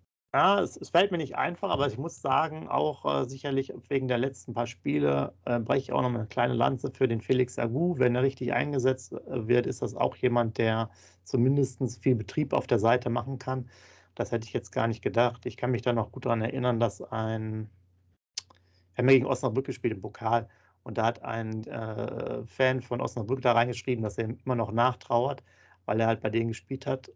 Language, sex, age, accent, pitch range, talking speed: German, male, 40-59, German, 110-125 Hz, 215 wpm